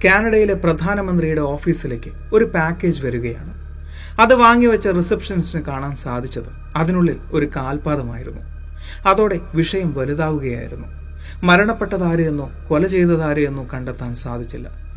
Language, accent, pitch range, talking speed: Malayalam, native, 125-175 Hz, 90 wpm